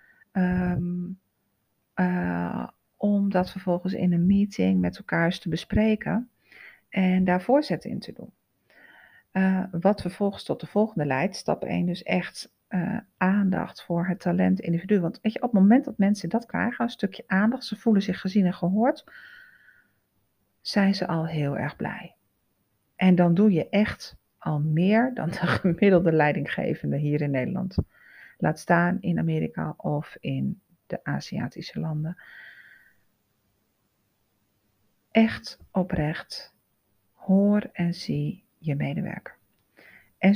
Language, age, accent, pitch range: Dutch, 40-59, Dutch, 170-215 Hz